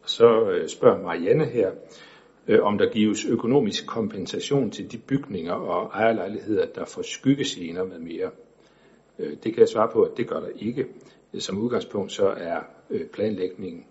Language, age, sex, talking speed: Danish, 60-79, male, 145 wpm